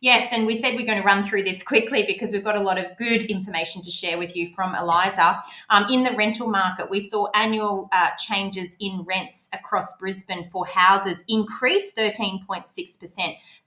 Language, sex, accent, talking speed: English, female, Australian, 190 wpm